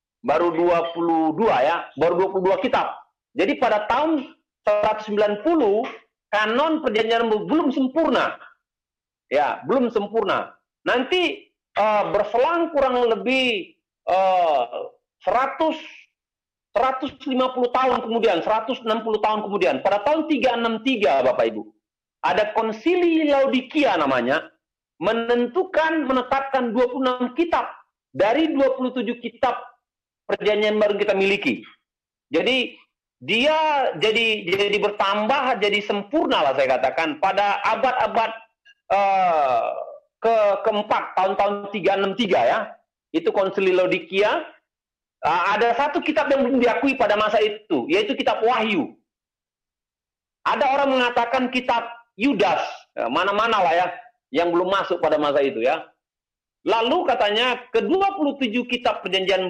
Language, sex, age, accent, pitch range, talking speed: Indonesian, male, 50-69, native, 205-290 Hz, 105 wpm